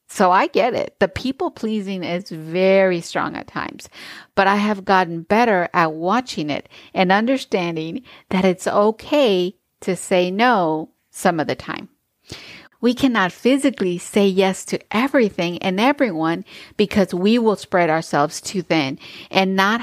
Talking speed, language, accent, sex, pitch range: 150 wpm, English, American, female, 175-215 Hz